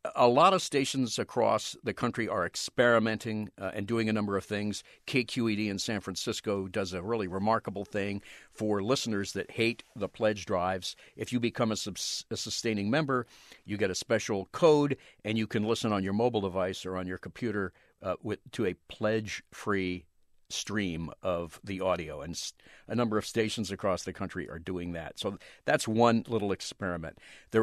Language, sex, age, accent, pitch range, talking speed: English, male, 50-69, American, 95-110 Hz, 180 wpm